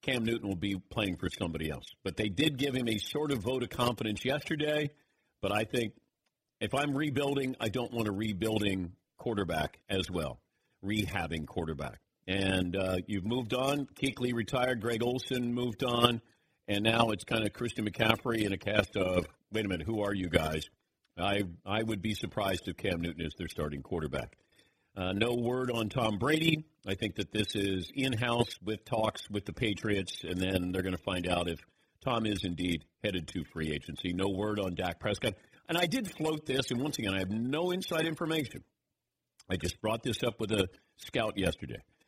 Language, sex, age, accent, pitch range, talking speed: English, male, 50-69, American, 95-130 Hz, 195 wpm